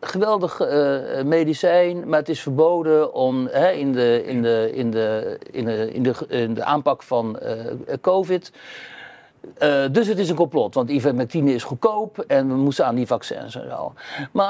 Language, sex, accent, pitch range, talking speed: Dutch, male, Dutch, 145-210 Hz, 190 wpm